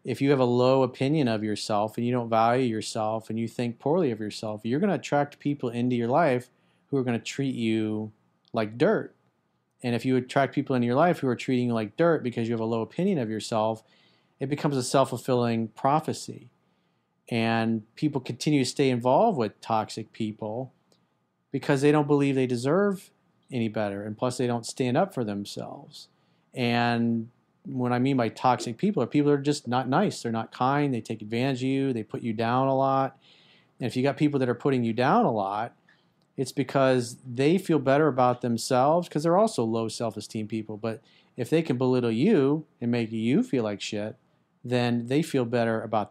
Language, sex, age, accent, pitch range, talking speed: English, male, 40-59, American, 115-140 Hz, 205 wpm